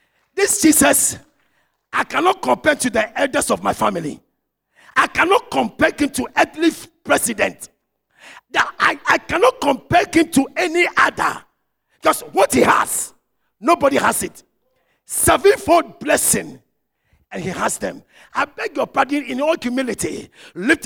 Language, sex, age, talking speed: English, male, 50-69, 135 wpm